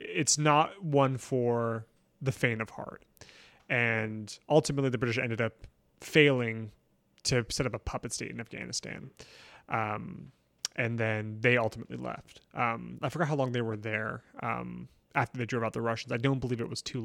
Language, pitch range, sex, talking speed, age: English, 115-135 Hz, male, 175 wpm, 20-39